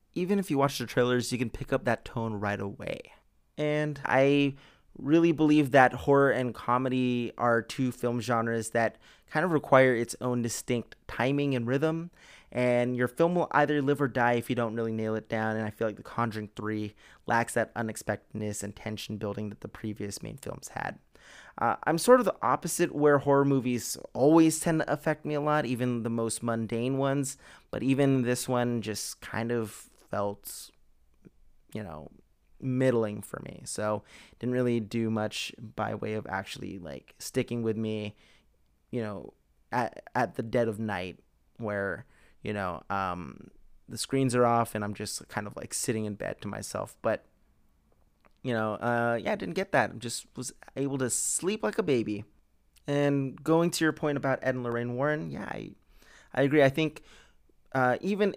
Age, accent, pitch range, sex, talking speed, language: 30-49, American, 110-140 Hz, male, 185 wpm, English